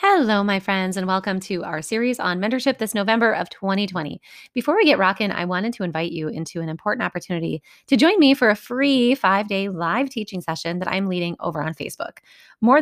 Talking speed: 205 wpm